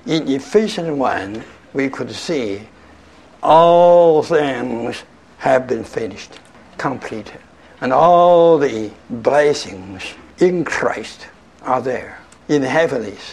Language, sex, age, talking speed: English, male, 60-79, 100 wpm